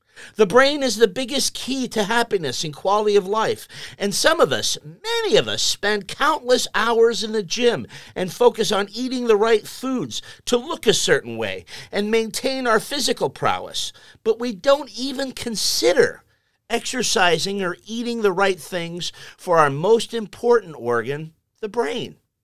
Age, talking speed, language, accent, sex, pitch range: 50-69, 160 wpm, English, American, male, 175-235 Hz